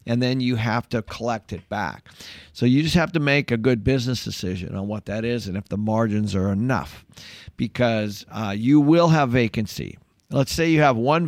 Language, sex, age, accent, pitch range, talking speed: English, male, 50-69, American, 105-135 Hz, 205 wpm